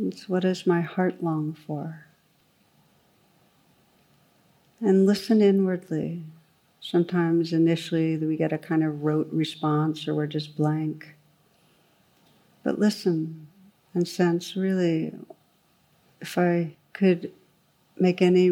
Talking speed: 105 wpm